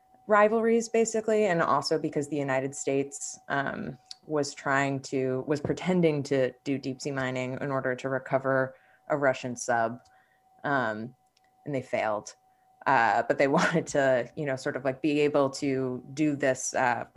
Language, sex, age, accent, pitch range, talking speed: English, female, 20-39, American, 130-185 Hz, 160 wpm